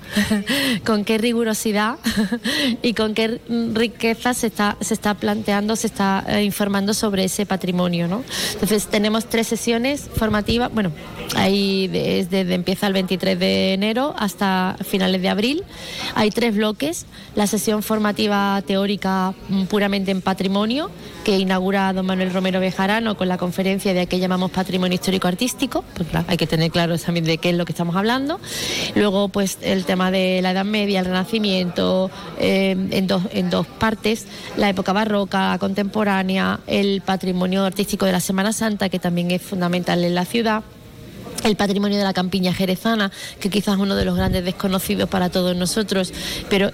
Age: 20-39